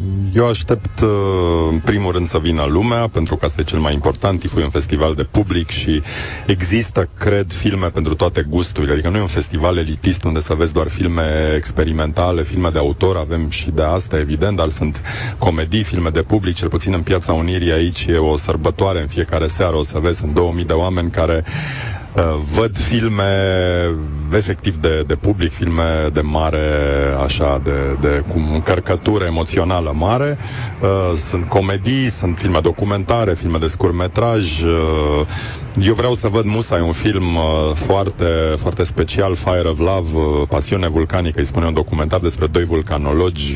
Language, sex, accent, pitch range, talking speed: Romanian, male, native, 80-95 Hz, 170 wpm